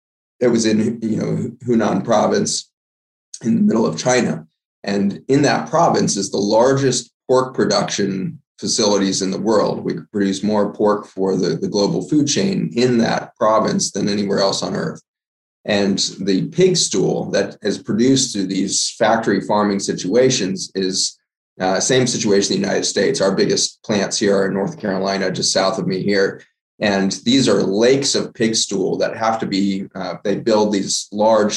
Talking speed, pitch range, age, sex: 175 wpm, 95-125 Hz, 20-39, male